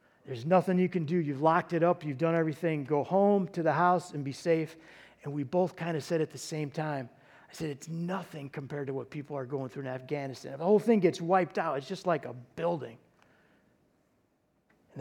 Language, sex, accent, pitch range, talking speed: English, male, American, 145-180 Hz, 220 wpm